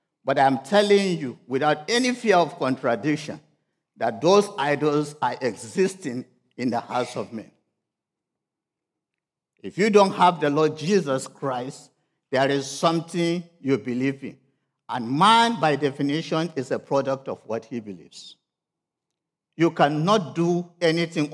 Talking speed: 135 wpm